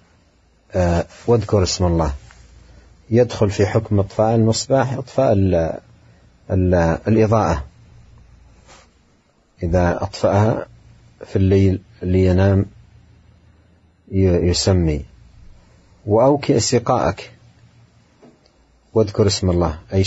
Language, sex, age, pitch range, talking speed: Arabic, male, 40-59, 85-110 Hz, 70 wpm